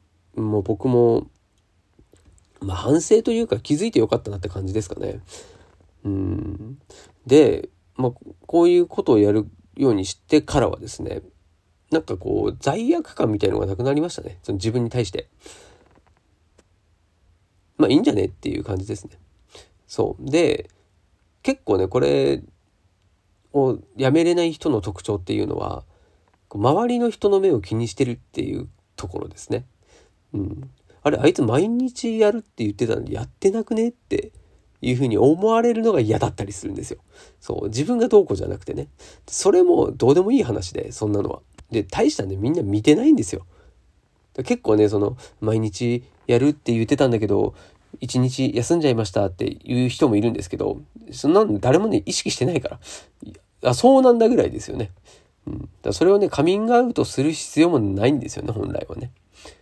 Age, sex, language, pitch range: 40-59, male, Japanese, 95-160 Hz